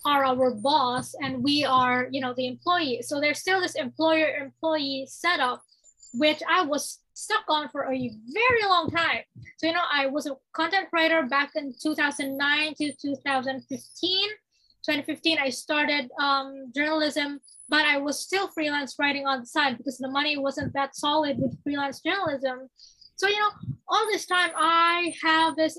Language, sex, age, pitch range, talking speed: English, female, 20-39, 275-325 Hz, 165 wpm